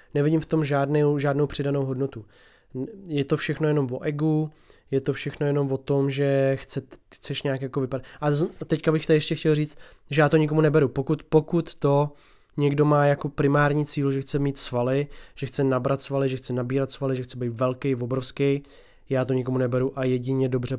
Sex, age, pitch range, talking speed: male, 20-39, 130-145 Hz, 205 wpm